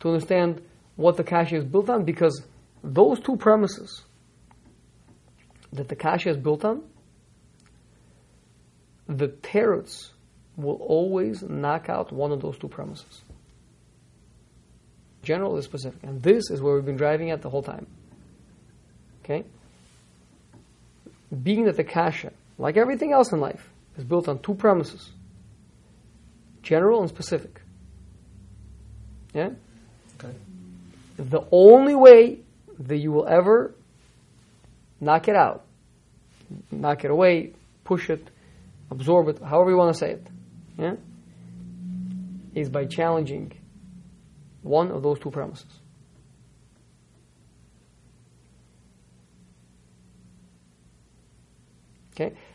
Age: 40-59